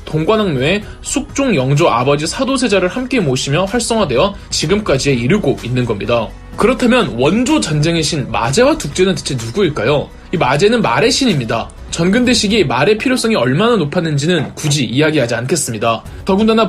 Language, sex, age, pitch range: Korean, male, 20-39, 145-225 Hz